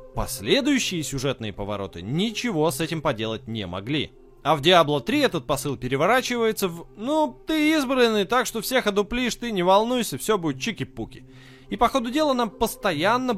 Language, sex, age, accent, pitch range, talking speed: Russian, male, 20-39, native, 125-200 Hz, 160 wpm